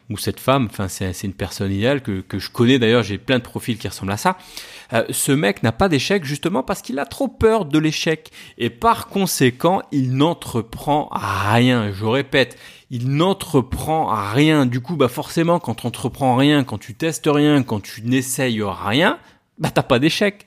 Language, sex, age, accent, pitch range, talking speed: French, male, 30-49, French, 115-165 Hz, 200 wpm